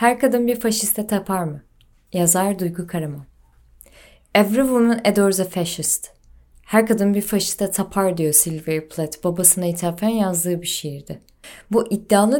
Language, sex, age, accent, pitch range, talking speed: Turkish, female, 30-49, native, 170-220 Hz, 140 wpm